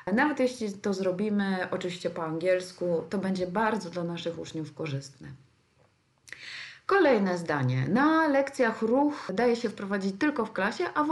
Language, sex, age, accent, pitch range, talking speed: Polish, female, 30-49, native, 180-240 Hz, 145 wpm